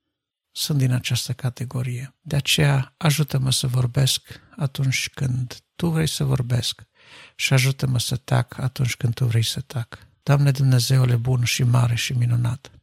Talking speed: 150 wpm